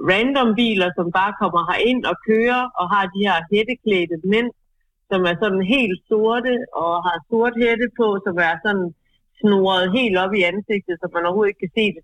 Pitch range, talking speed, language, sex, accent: 170-210 Hz, 195 wpm, Danish, female, native